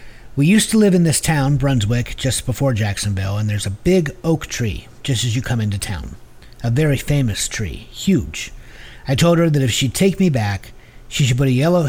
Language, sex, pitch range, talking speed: English, male, 110-145 Hz, 210 wpm